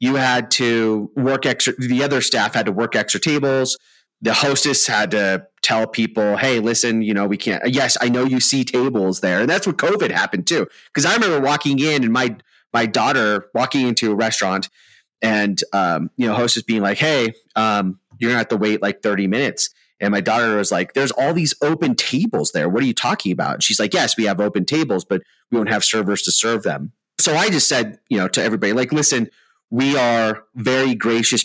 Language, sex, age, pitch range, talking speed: English, male, 30-49, 105-130 Hz, 220 wpm